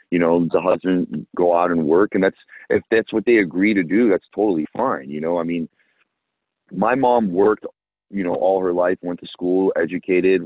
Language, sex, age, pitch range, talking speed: English, male, 30-49, 90-110 Hz, 205 wpm